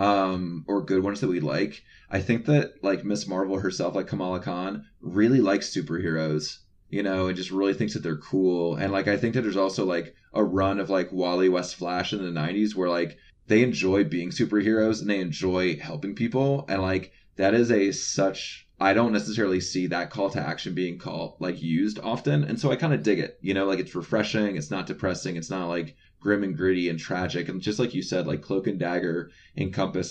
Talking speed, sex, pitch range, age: 220 wpm, male, 85-95 Hz, 20-39